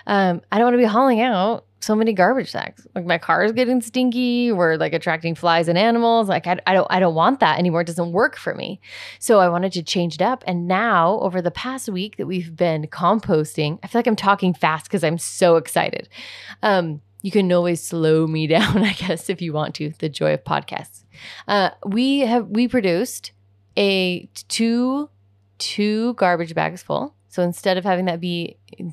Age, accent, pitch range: 20-39, American, 160-205 Hz